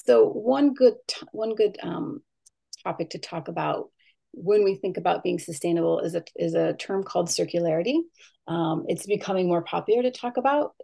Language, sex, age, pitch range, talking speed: English, female, 30-49, 175-235 Hz, 175 wpm